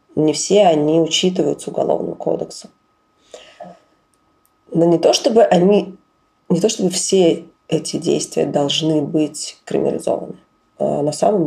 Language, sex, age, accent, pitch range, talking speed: Russian, female, 20-39, native, 150-180 Hz, 100 wpm